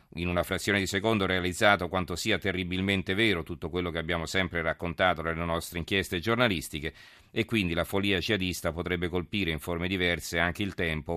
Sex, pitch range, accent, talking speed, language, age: male, 85-100 Hz, native, 185 wpm, Italian, 40-59